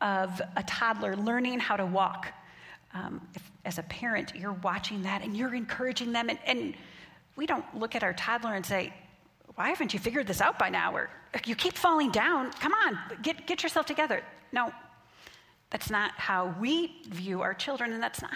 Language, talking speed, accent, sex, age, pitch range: English, 190 wpm, American, female, 40-59, 195-255 Hz